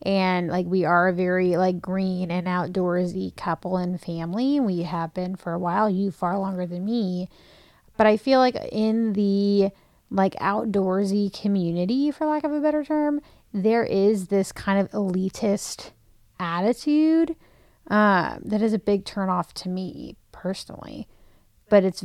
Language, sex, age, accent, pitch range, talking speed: English, female, 30-49, American, 185-240 Hz, 155 wpm